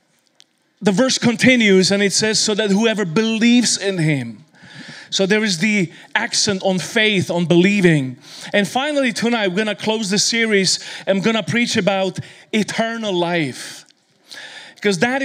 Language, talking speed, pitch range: English, 155 wpm, 180-220 Hz